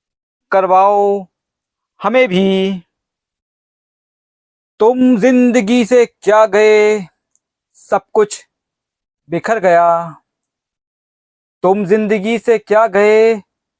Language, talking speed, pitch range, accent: Hindi, 75 wpm, 180-225 Hz, native